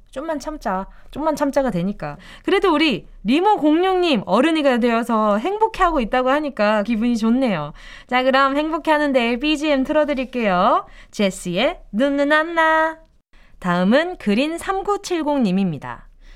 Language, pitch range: Korean, 220-330 Hz